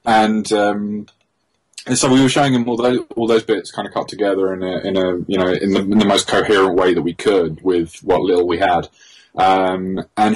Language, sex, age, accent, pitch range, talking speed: English, male, 20-39, British, 90-105 Hz, 230 wpm